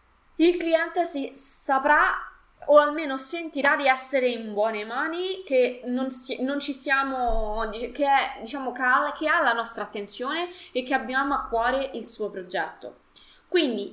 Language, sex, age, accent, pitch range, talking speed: Italian, female, 20-39, native, 215-285 Hz, 150 wpm